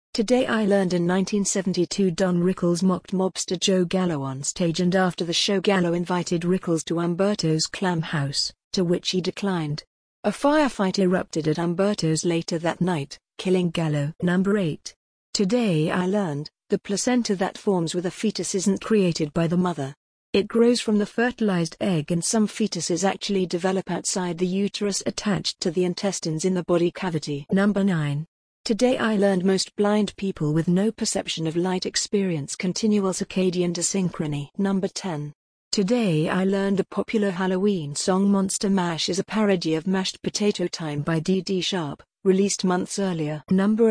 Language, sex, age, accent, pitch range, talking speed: English, female, 50-69, British, 170-200 Hz, 165 wpm